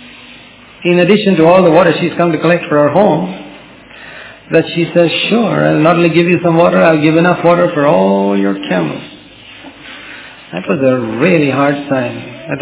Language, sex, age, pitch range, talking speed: English, male, 50-69, 150-205 Hz, 185 wpm